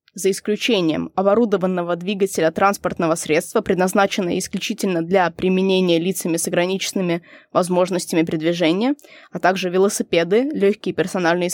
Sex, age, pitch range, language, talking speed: female, 20-39, 175-225 Hz, Russian, 105 wpm